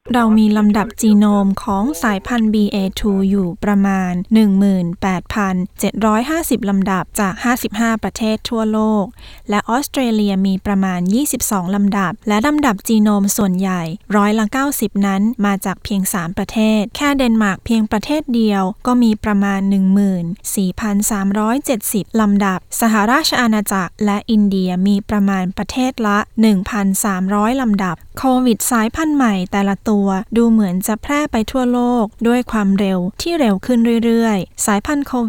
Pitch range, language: 195-230 Hz, Thai